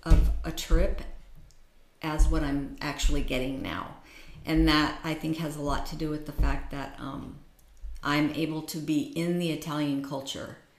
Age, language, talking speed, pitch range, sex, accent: 50-69, Italian, 170 wpm, 145-165 Hz, female, American